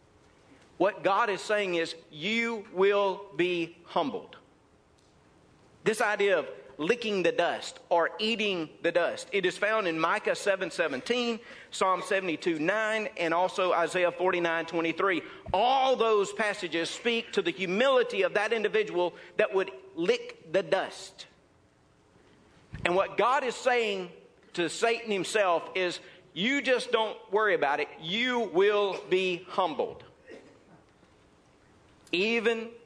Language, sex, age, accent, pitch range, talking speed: English, male, 50-69, American, 185-270 Hz, 130 wpm